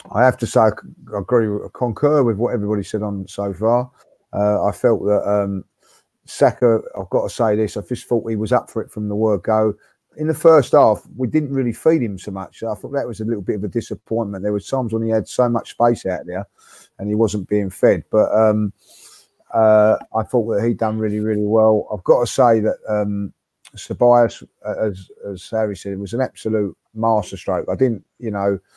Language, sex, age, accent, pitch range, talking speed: English, male, 30-49, British, 105-120 Hz, 220 wpm